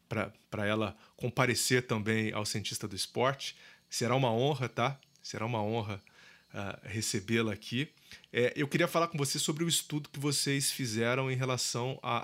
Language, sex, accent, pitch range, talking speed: Portuguese, male, Brazilian, 115-155 Hz, 160 wpm